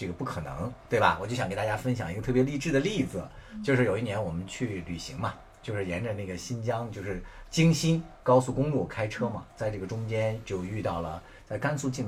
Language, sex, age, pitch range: Chinese, male, 50-69, 90-125 Hz